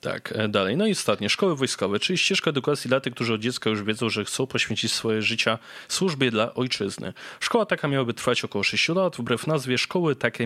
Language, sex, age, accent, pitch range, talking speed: Polish, male, 20-39, native, 110-145 Hz, 205 wpm